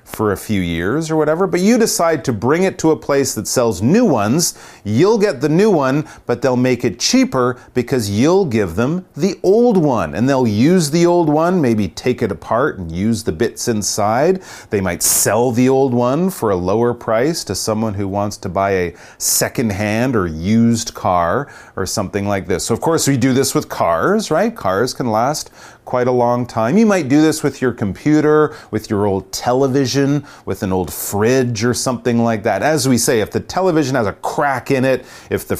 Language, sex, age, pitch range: Chinese, male, 30-49, 105-150 Hz